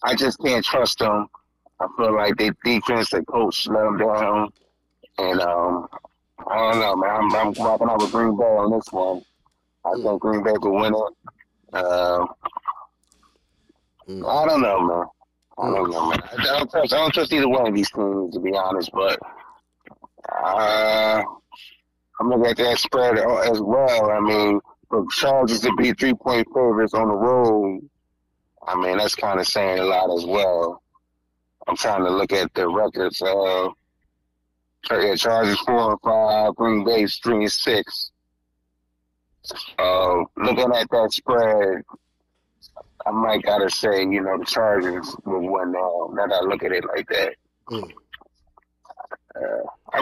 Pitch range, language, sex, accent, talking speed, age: 85-110 Hz, English, male, American, 155 wpm, 30-49